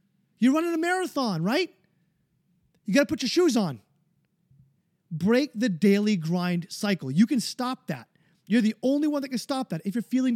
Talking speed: 185 wpm